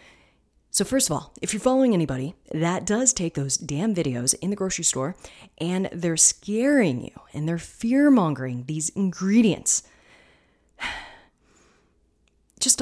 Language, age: English, 30-49